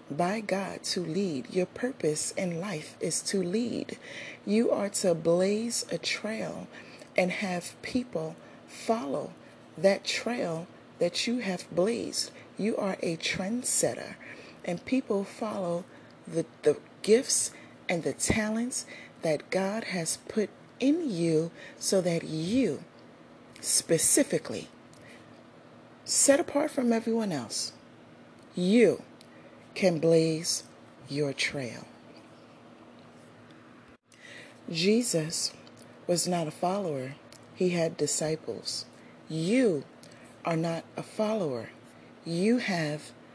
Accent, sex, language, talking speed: American, female, English, 105 wpm